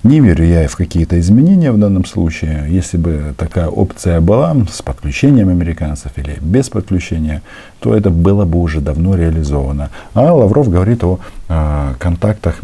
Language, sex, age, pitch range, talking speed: Russian, male, 50-69, 80-100 Hz, 150 wpm